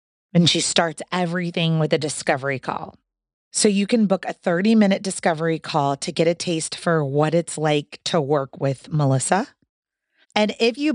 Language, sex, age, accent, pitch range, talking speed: English, female, 30-49, American, 160-190 Hz, 170 wpm